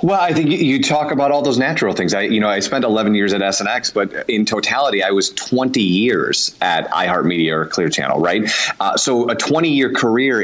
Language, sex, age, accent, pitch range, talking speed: English, male, 30-49, American, 100-125 Hz, 215 wpm